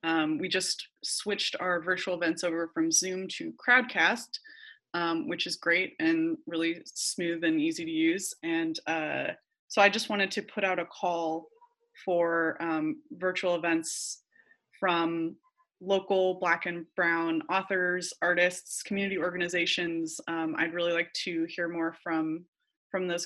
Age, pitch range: 20-39, 170-200 Hz